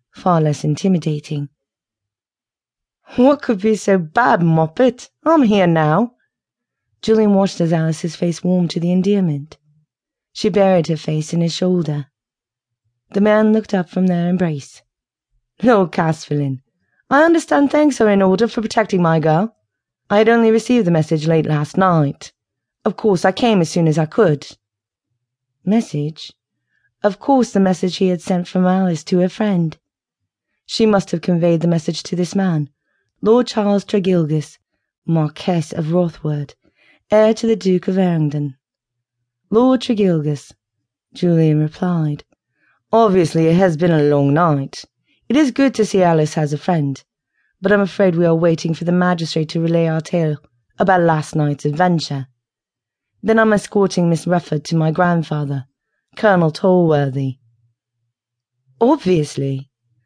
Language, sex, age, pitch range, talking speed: English, female, 30-49, 145-195 Hz, 145 wpm